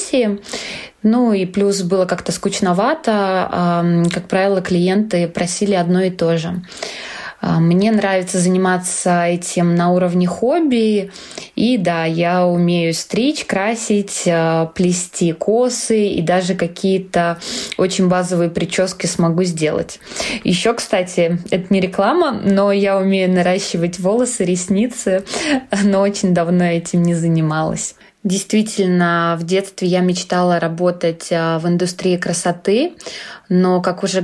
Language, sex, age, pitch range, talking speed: Russian, female, 20-39, 175-200 Hz, 115 wpm